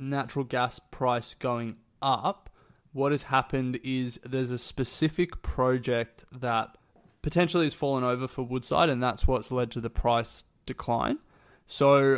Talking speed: 145 wpm